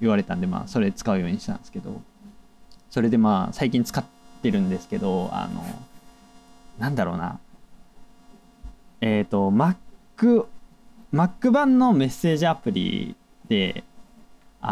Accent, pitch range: native, 165-225 Hz